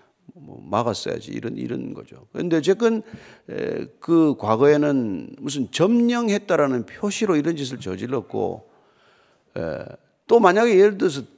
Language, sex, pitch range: Korean, male, 140-215 Hz